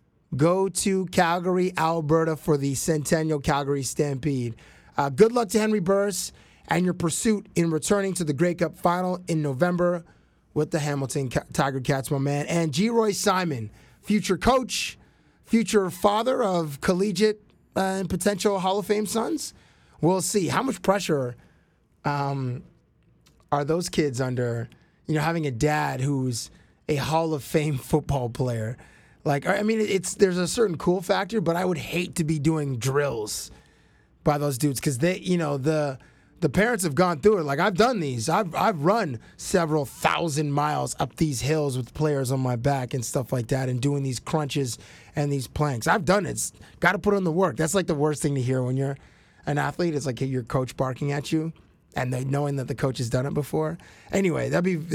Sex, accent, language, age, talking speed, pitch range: male, American, English, 20-39, 190 wpm, 140-185 Hz